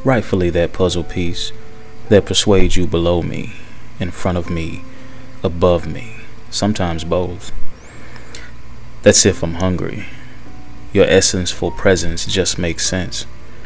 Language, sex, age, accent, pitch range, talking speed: English, male, 20-39, American, 90-115 Hz, 125 wpm